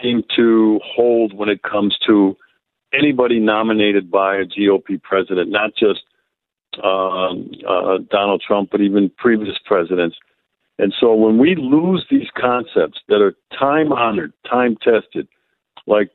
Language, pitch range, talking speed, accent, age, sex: English, 105-125 Hz, 125 wpm, American, 50-69, male